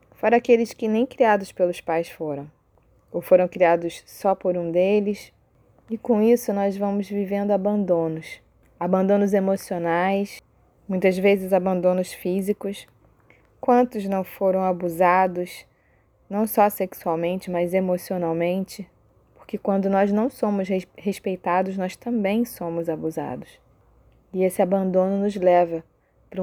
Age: 20-39